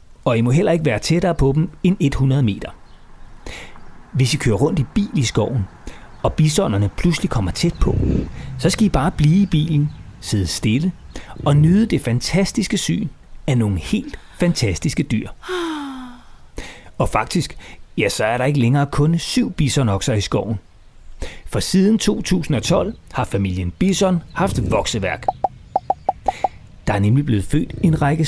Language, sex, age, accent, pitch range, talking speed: Danish, male, 30-49, native, 110-170 Hz, 155 wpm